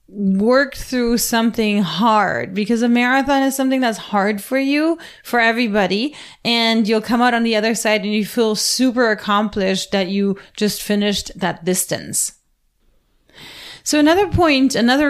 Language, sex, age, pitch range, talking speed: English, female, 30-49, 200-240 Hz, 150 wpm